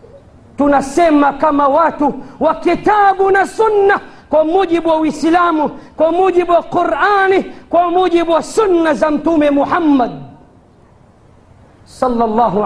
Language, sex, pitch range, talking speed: Swahili, female, 265-335 Hz, 100 wpm